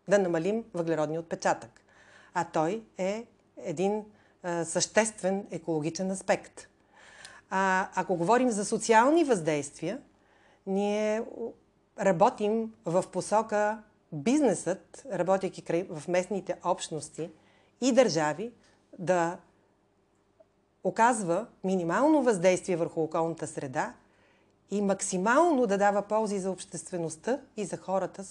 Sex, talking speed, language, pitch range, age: female, 95 wpm, Bulgarian, 165-215 Hz, 40-59